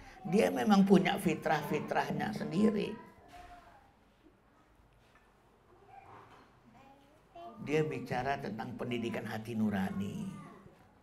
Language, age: Indonesian, 50-69